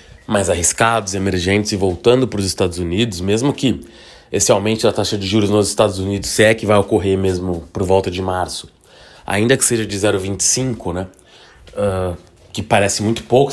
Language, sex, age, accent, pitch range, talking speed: Portuguese, male, 20-39, Brazilian, 95-120 Hz, 180 wpm